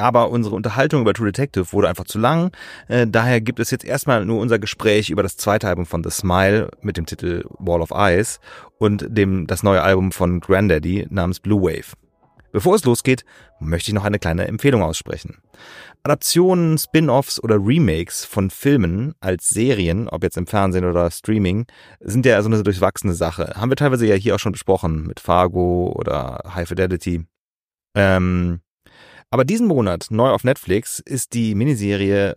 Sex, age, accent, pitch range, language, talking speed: male, 30-49, German, 95-115 Hz, German, 175 wpm